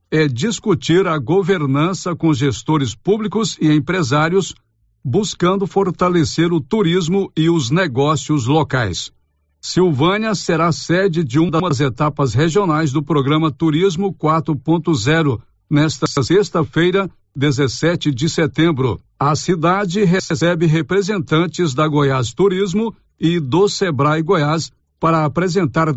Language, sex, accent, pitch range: Portuguese, male, Brazilian, 145-180 Hz